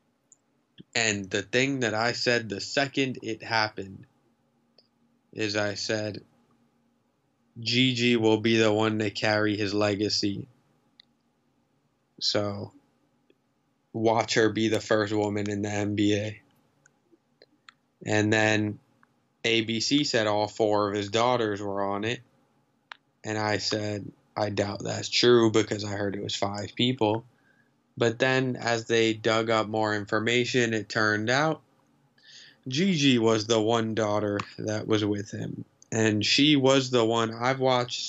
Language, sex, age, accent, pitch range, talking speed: English, male, 20-39, American, 105-120 Hz, 135 wpm